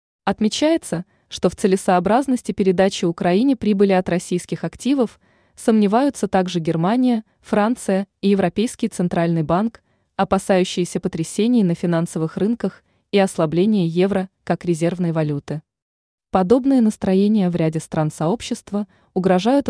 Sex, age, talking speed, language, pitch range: female, 20-39, 110 wpm, Russian, 175-215 Hz